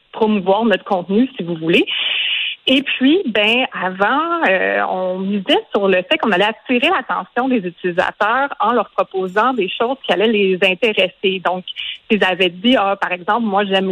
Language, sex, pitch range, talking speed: French, female, 195-265 Hz, 175 wpm